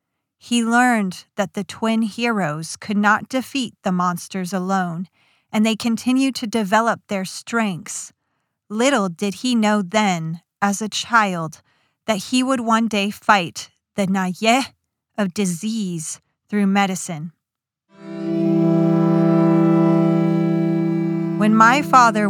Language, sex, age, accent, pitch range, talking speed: English, female, 30-49, American, 170-220 Hz, 115 wpm